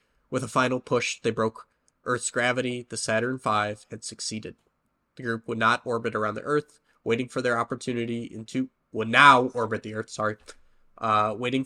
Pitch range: 110-125 Hz